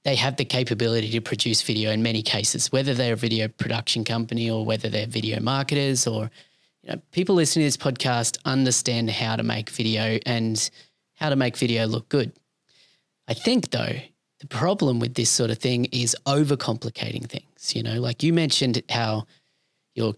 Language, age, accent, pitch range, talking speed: English, 20-39, Australian, 115-135 Hz, 180 wpm